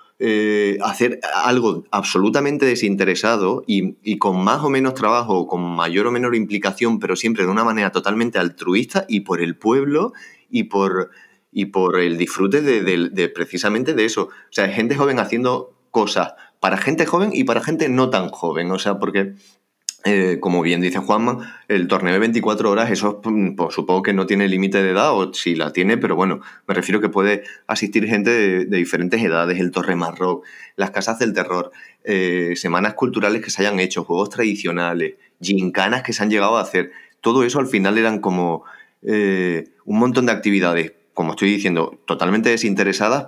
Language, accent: Spanish, Spanish